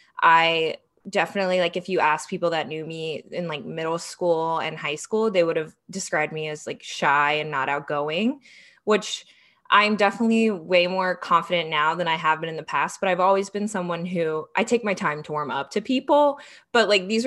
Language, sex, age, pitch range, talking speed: English, female, 20-39, 165-205 Hz, 210 wpm